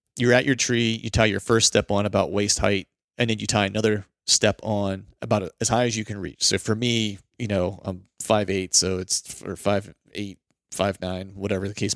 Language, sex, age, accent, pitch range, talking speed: English, male, 30-49, American, 100-115 Hz, 230 wpm